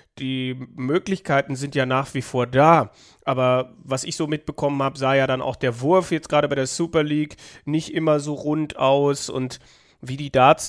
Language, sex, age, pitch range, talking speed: German, male, 30-49, 130-155 Hz, 195 wpm